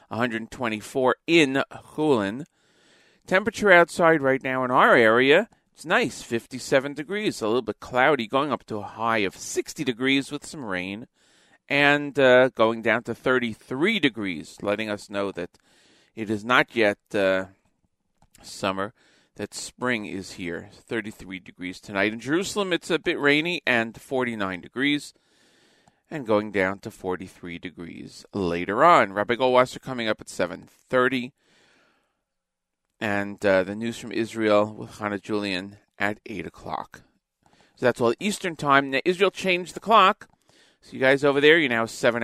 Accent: American